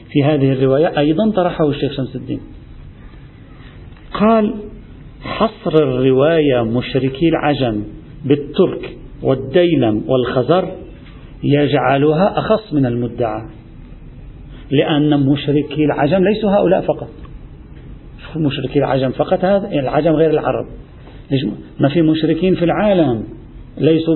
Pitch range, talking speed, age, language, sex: 140-190 Hz, 100 wpm, 50-69, Arabic, male